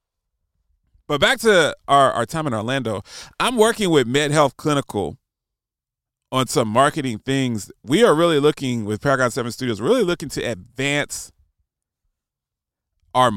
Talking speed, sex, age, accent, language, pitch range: 135 wpm, male, 30-49, American, English, 100-145 Hz